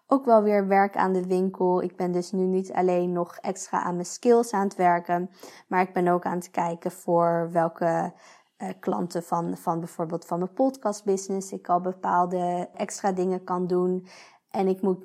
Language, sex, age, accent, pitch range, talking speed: Dutch, female, 20-39, Dutch, 175-200 Hz, 190 wpm